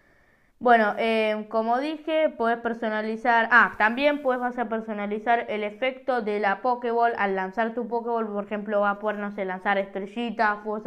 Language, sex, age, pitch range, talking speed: Spanish, female, 20-39, 200-235 Hz, 160 wpm